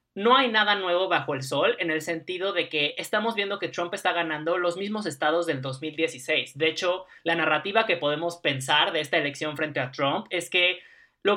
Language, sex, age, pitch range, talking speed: Spanish, male, 20-39, 150-200 Hz, 205 wpm